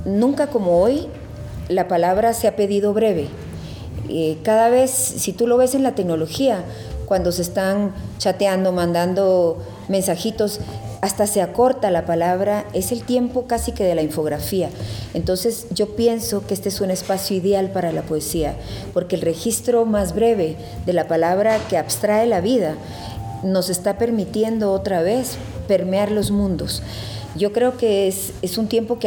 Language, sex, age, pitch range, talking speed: Spanish, female, 40-59, 160-215 Hz, 160 wpm